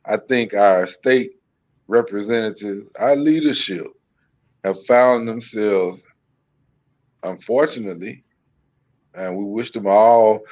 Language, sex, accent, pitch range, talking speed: English, male, American, 105-150 Hz, 90 wpm